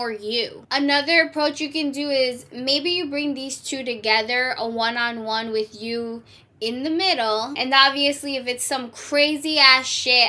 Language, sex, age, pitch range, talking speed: English, female, 10-29, 235-295 Hz, 165 wpm